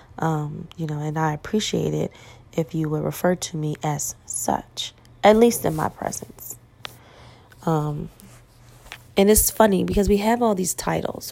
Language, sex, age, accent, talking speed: English, female, 20-39, American, 160 wpm